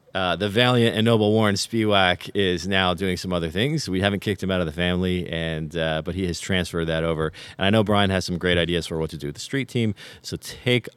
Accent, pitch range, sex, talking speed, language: American, 85-110 Hz, male, 255 wpm, English